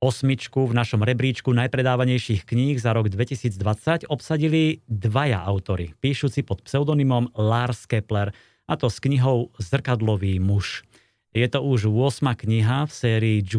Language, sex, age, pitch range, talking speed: Slovak, male, 30-49, 110-130 Hz, 130 wpm